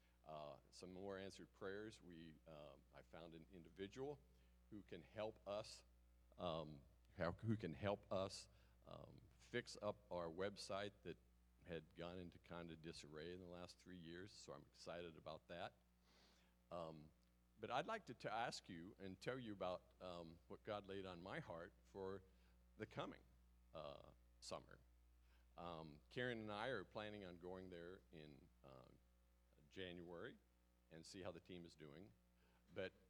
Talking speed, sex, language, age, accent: 155 wpm, male, English, 50-69, American